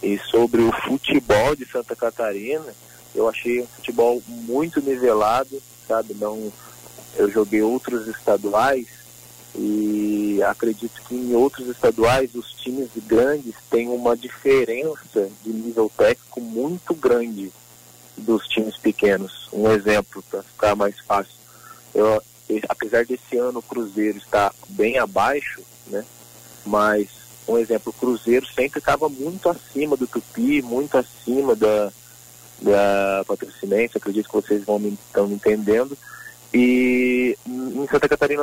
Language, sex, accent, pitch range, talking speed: Portuguese, male, Brazilian, 105-135 Hz, 130 wpm